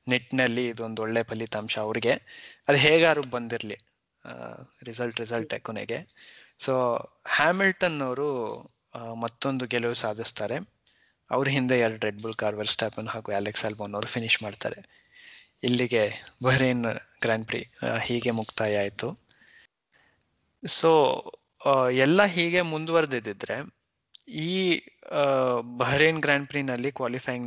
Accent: native